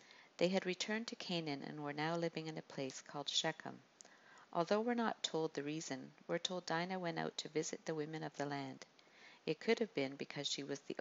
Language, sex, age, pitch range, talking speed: English, female, 50-69, 145-180 Hz, 220 wpm